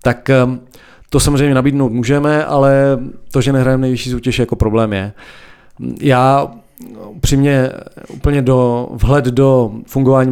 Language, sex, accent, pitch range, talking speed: Czech, male, native, 115-140 Hz, 130 wpm